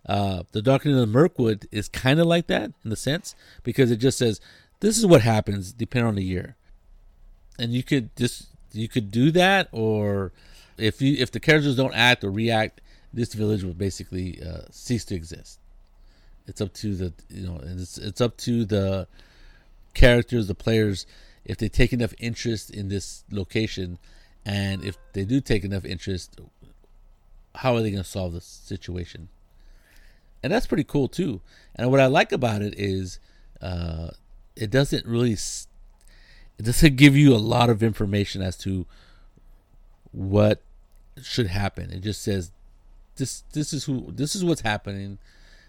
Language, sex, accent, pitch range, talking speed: English, male, American, 95-125 Hz, 170 wpm